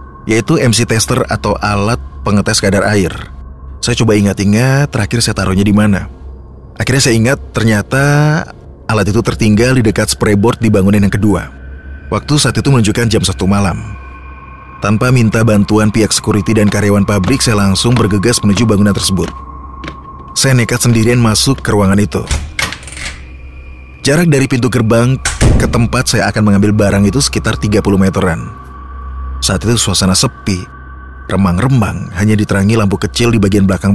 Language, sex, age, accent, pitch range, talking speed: Indonesian, male, 30-49, native, 95-115 Hz, 150 wpm